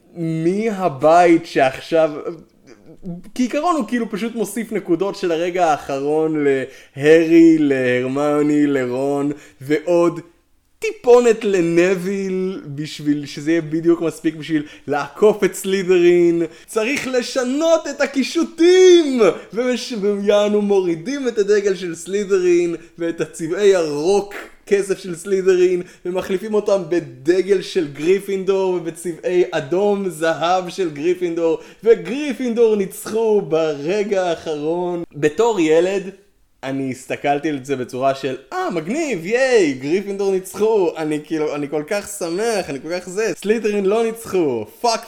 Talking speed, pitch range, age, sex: 115 wpm, 160-225 Hz, 20-39, male